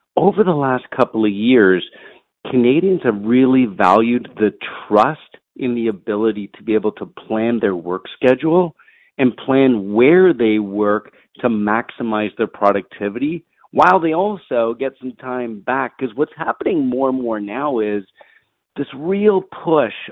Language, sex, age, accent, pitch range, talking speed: English, male, 50-69, American, 110-145 Hz, 150 wpm